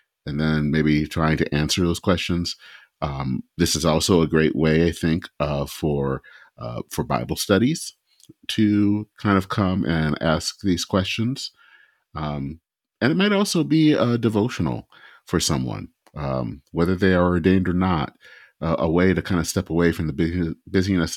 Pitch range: 80-105 Hz